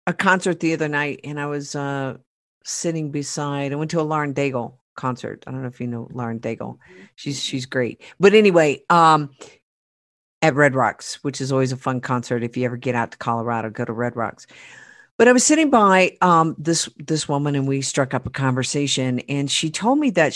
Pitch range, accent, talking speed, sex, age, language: 130-165 Hz, American, 210 wpm, female, 50-69, English